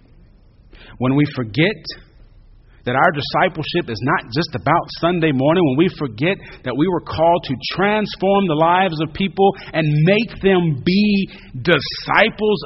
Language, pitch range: English, 130-205 Hz